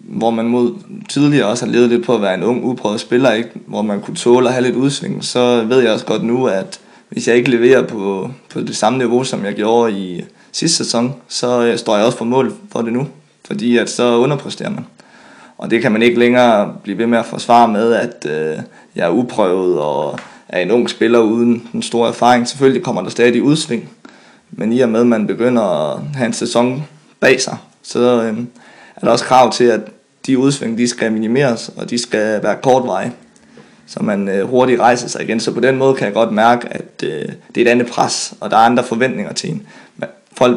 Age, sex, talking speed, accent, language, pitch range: 20-39, male, 230 wpm, native, Danish, 115-130 Hz